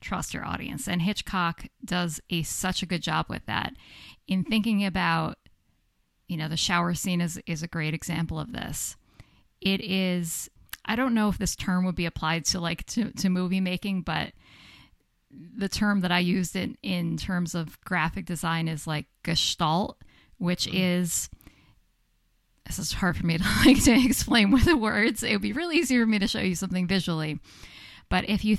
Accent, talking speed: American, 185 wpm